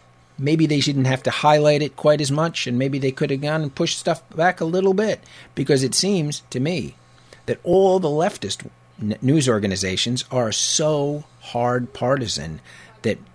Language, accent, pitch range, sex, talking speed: English, American, 110-145 Hz, male, 180 wpm